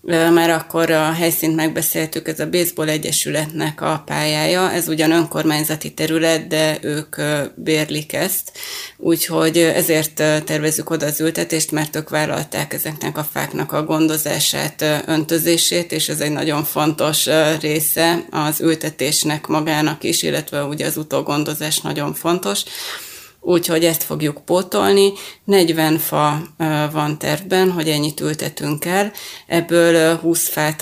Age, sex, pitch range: 30-49, female, 155-170 Hz